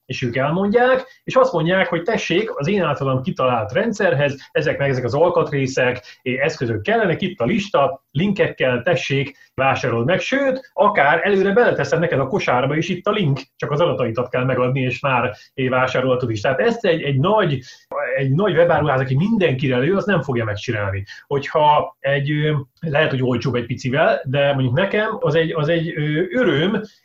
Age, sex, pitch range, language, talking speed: 30-49, male, 125-170 Hz, Hungarian, 175 wpm